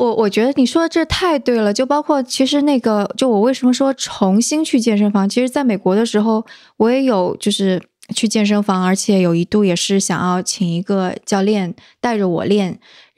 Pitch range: 195-240 Hz